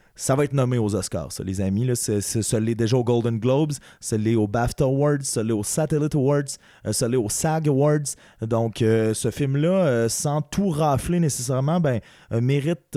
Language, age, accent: French, 20-39, Canadian